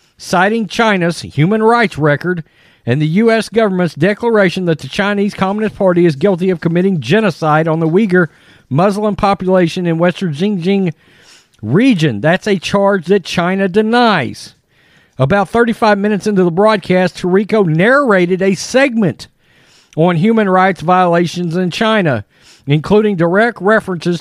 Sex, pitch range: male, 170-210 Hz